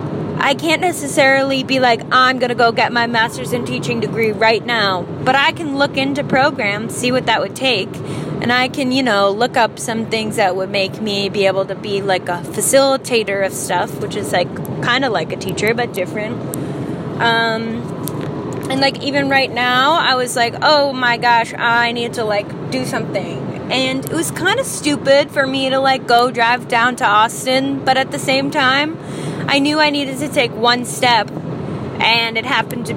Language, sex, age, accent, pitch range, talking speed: English, female, 20-39, American, 200-270 Hz, 200 wpm